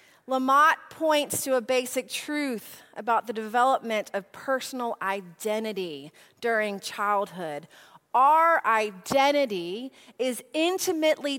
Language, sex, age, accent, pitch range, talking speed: English, female, 30-49, American, 210-275 Hz, 95 wpm